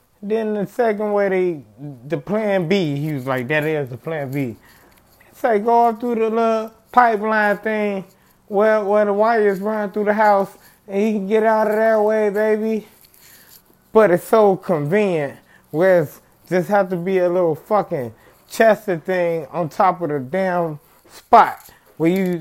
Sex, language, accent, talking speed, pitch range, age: male, English, American, 170 wpm, 155-220 Hz, 20-39